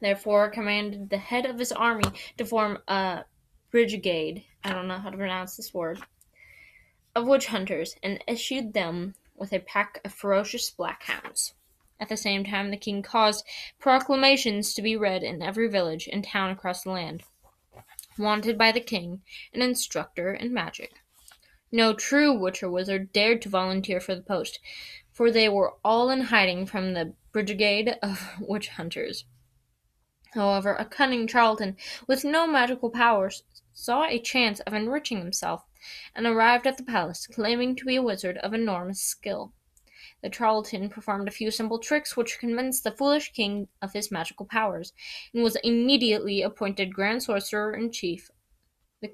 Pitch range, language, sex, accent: 190-235 Hz, English, female, American